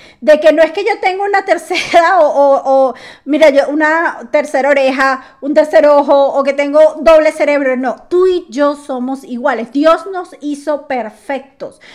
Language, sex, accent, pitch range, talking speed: Spanish, female, American, 265-335 Hz, 175 wpm